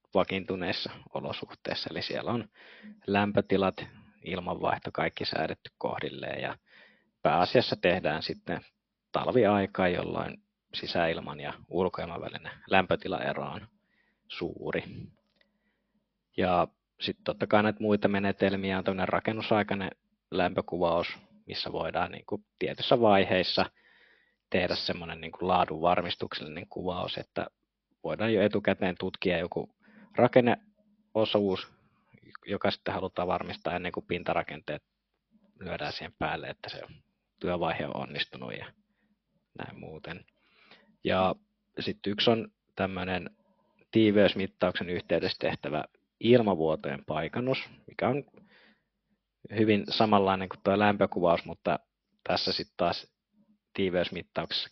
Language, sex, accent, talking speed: Finnish, male, native, 100 wpm